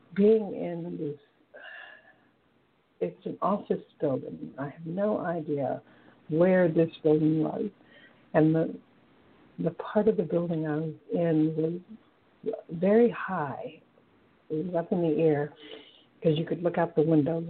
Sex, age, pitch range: female, 60-79, 155-205 Hz